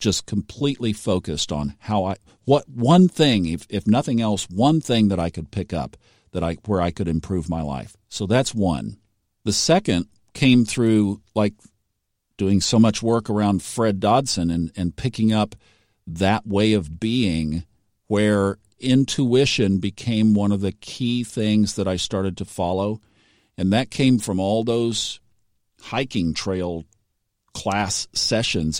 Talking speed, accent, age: 155 wpm, American, 50-69